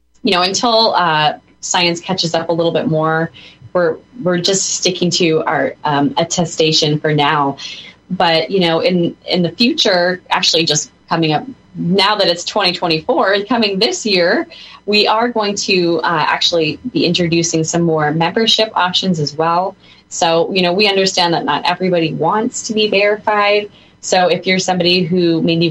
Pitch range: 160-190 Hz